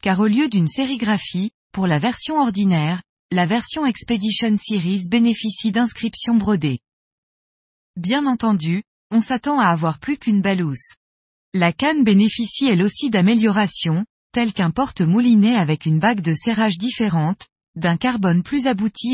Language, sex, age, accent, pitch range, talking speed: French, female, 20-39, French, 180-240 Hz, 140 wpm